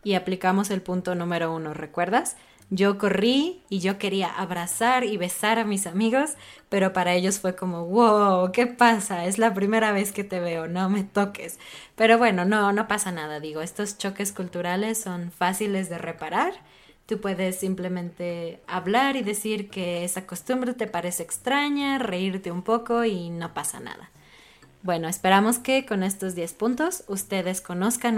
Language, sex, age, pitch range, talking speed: Spanish, female, 20-39, 180-225 Hz, 165 wpm